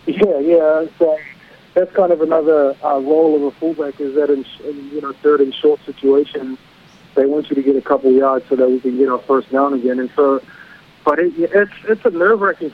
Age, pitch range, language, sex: 30-49, 130-155 Hz, English, male